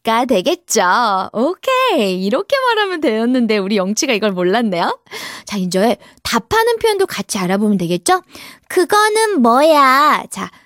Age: 20-39